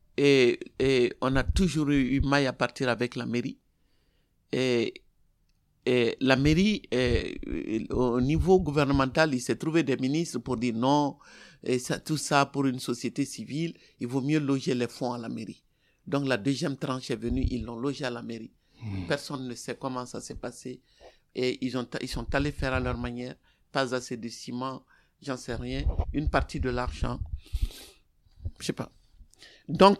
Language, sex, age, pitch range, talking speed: French, male, 60-79, 125-150 Hz, 180 wpm